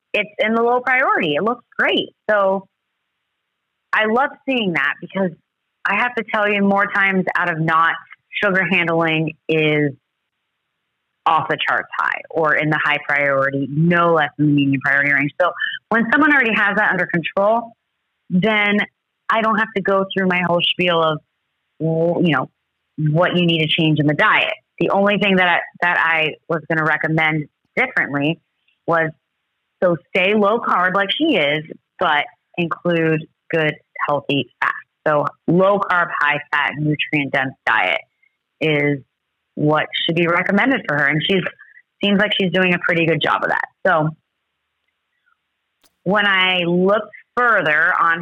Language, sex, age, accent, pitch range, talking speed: English, female, 30-49, American, 155-200 Hz, 160 wpm